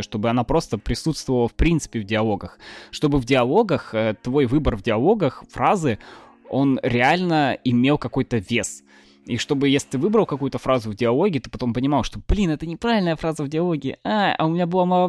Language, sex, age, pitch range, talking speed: Russian, male, 20-39, 120-150 Hz, 185 wpm